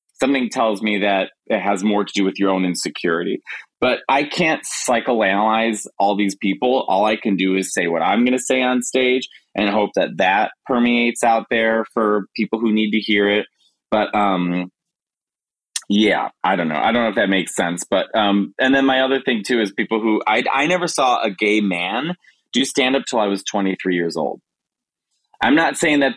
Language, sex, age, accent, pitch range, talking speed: English, male, 30-49, American, 95-120 Hz, 210 wpm